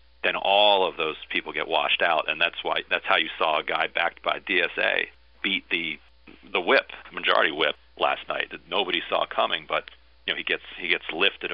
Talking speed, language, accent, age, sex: 210 wpm, English, American, 40-59, male